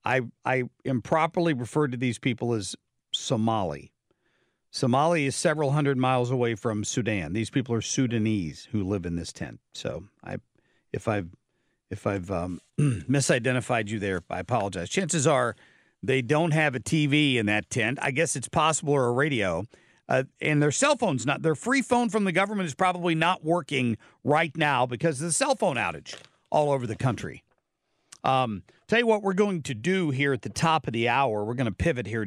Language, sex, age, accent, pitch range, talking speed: English, male, 50-69, American, 115-150 Hz, 190 wpm